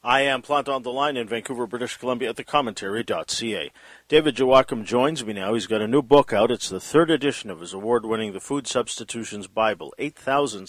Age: 50-69